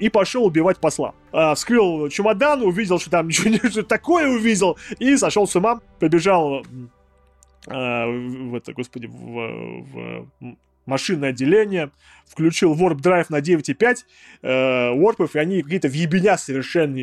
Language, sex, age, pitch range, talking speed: Russian, male, 20-39, 130-180 Hz, 130 wpm